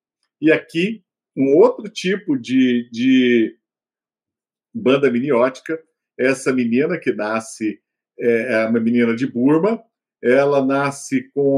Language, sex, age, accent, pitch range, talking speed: Portuguese, male, 50-69, Brazilian, 125-185 Hz, 110 wpm